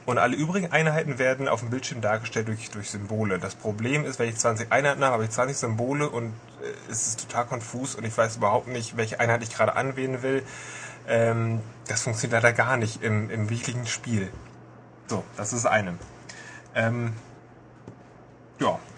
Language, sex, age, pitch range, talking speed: German, male, 10-29, 115-130 Hz, 185 wpm